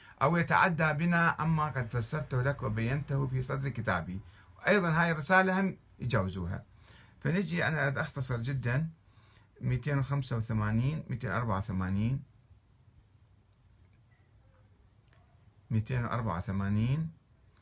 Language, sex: Arabic, male